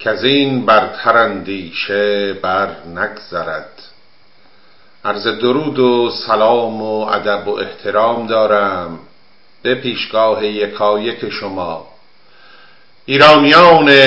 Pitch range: 100-130 Hz